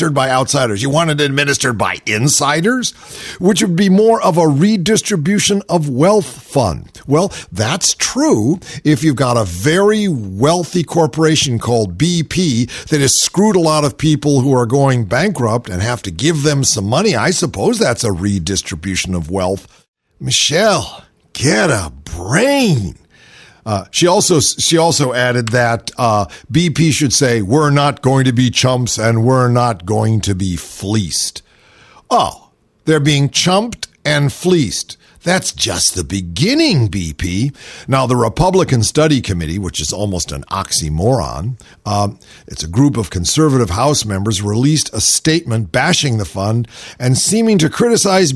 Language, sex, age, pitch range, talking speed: English, male, 50-69, 115-170 Hz, 150 wpm